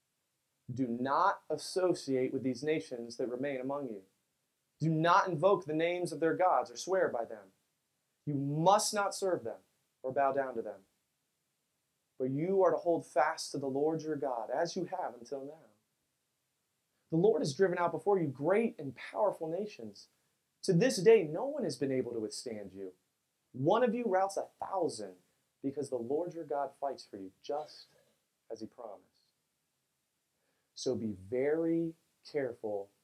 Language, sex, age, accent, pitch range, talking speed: English, male, 30-49, American, 125-175 Hz, 165 wpm